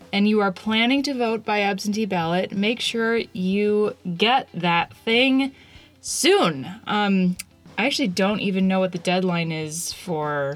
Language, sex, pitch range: English, female, 165-205 Hz